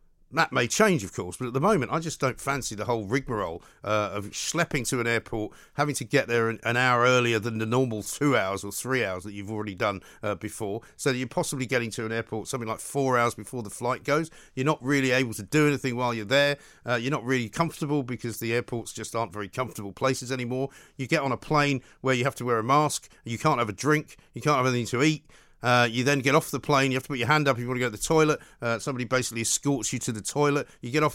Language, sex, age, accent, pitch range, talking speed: English, male, 50-69, British, 120-150 Hz, 270 wpm